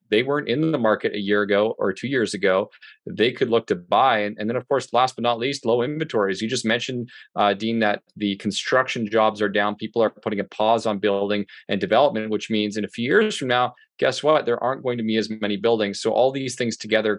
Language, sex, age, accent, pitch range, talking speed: English, male, 30-49, American, 105-130 Hz, 250 wpm